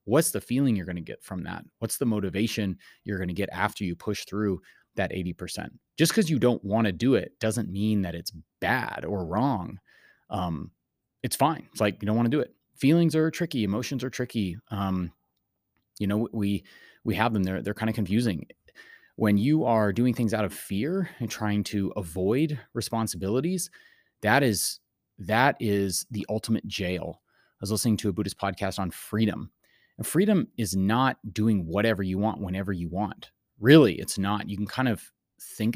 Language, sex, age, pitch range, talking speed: English, male, 30-49, 100-120 Hz, 185 wpm